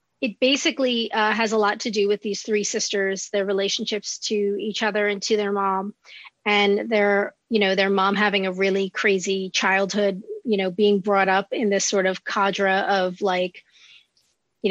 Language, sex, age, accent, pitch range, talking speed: English, female, 30-49, American, 195-220 Hz, 185 wpm